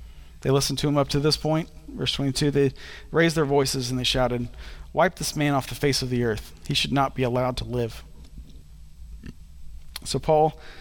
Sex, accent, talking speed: male, American, 195 wpm